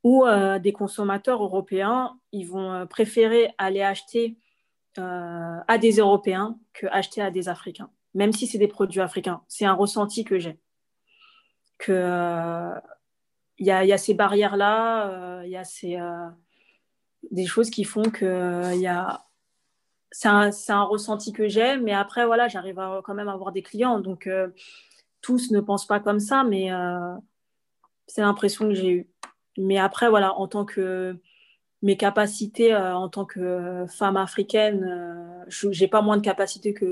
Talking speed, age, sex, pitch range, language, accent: 175 wpm, 20-39, female, 185-215 Hz, French, French